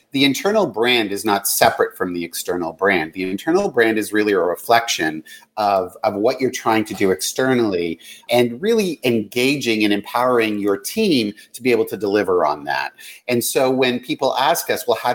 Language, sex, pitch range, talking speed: English, male, 105-135 Hz, 185 wpm